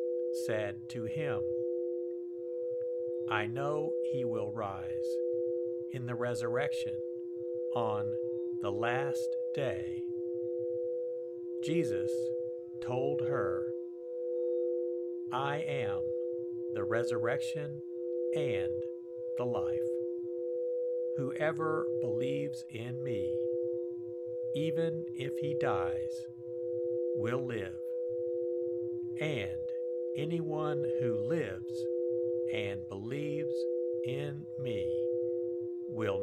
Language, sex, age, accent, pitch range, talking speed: English, male, 50-69, American, 120-165 Hz, 75 wpm